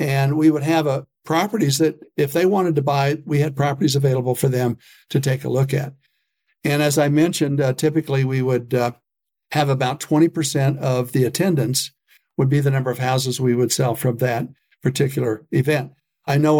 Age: 60-79